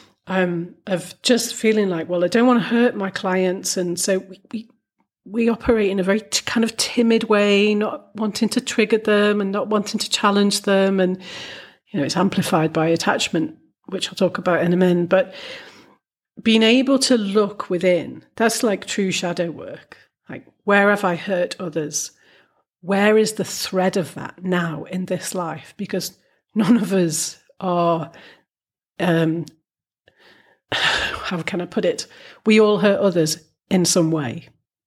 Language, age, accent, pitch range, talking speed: English, 40-59, British, 170-210 Hz, 165 wpm